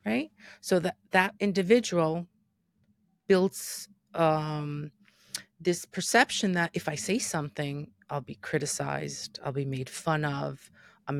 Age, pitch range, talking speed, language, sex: 30-49, 145-185 Hz, 125 wpm, English, female